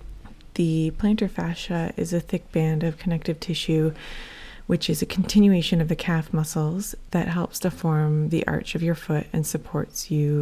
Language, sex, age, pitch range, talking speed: English, female, 20-39, 150-180 Hz, 175 wpm